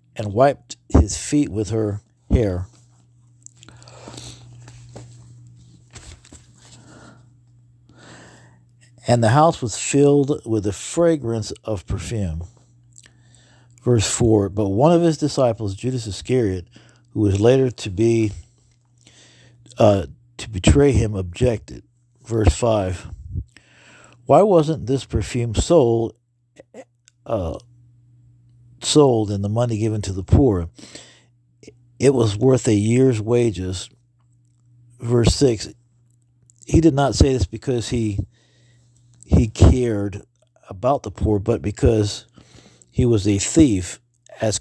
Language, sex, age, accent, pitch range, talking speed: English, male, 60-79, American, 105-120 Hz, 105 wpm